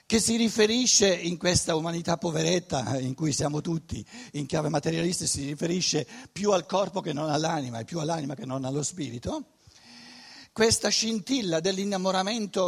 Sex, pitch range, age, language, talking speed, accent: male, 150-200 Hz, 60-79, Italian, 150 wpm, native